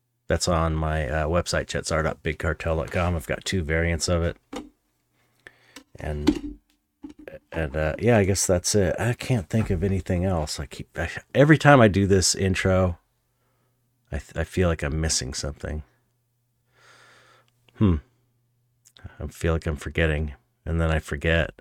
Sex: male